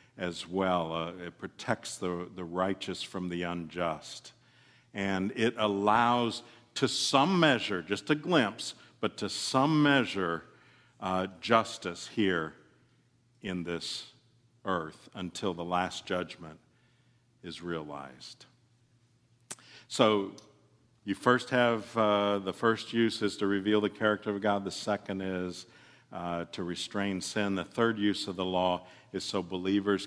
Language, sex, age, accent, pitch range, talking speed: English, male, 50-69, American, 95-115 Hz, 135 wpm